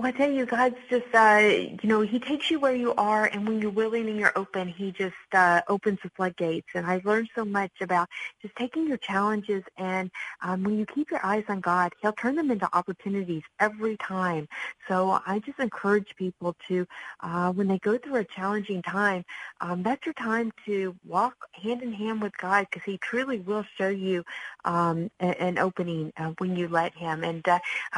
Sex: female